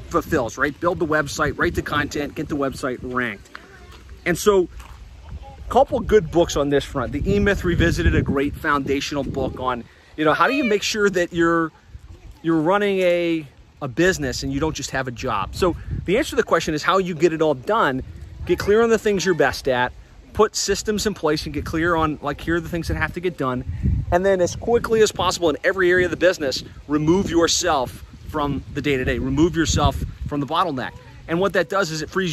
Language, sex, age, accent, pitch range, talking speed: English, male, 30-49, American, 135-170 Hz, 225 wpm